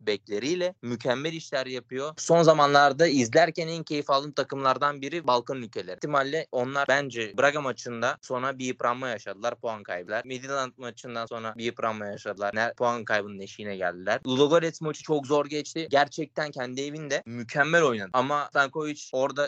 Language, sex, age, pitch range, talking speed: Turkish, male, 20-39, 120-155 Hz, 150 wpm